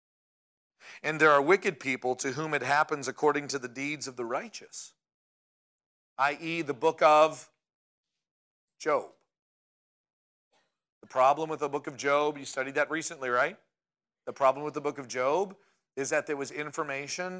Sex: male